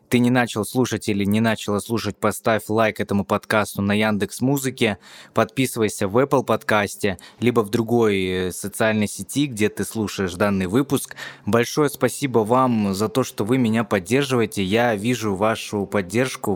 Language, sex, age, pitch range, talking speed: Russian, male, 20-39, 105-125 Hz, 150 wpm